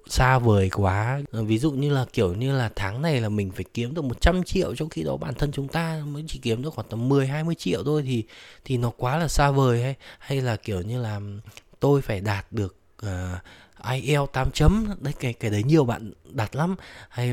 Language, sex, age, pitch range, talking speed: Vietnamese, male, 20-39, 100-135 Hz, 225 wpm